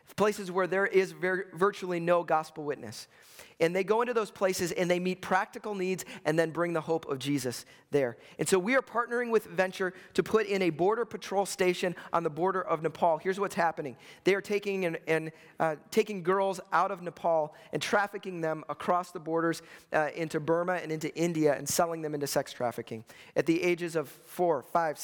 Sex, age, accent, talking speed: male, 30-49, American, 200 wpm